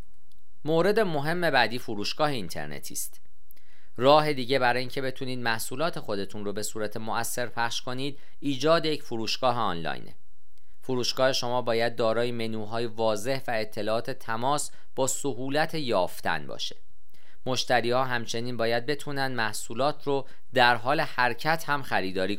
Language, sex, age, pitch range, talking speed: Persian, male, 40-59, 110-135 Hz, 125 wpm